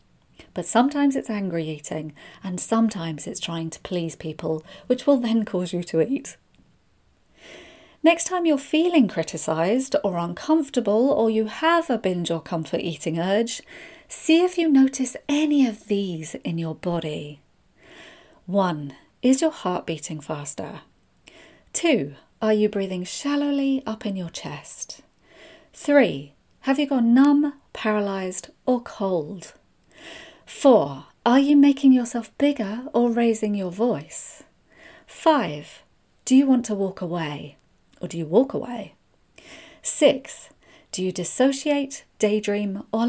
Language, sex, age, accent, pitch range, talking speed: English, female, 40-59, British, 170-275 Hz, 135 wpm